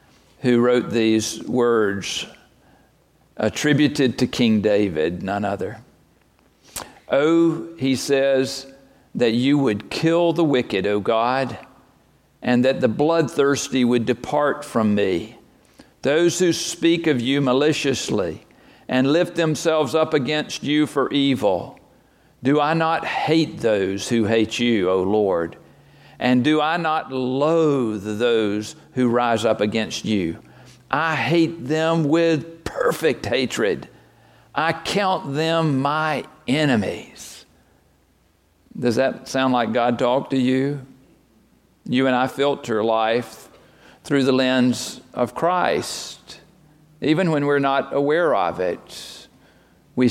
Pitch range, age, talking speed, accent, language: 120-155 Hz, 50-69, 120 wpm, American, English